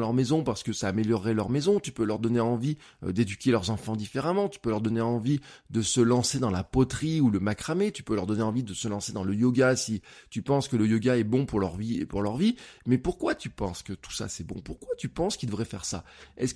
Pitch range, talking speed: 115-160 Hz, 270 wpm